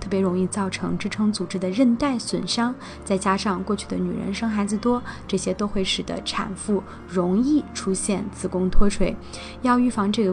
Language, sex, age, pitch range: Chinese, female, 20-39, 185-220 Hz